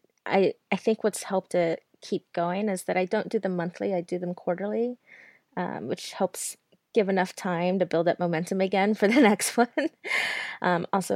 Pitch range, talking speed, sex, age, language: 170-210 Hz, 195 wpm, female, 20-39, English